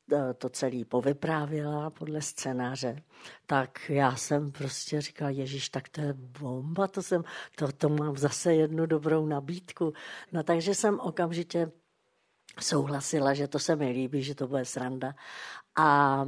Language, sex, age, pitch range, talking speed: Czech, female, 60-79, 135-165 Hz, 145 wpm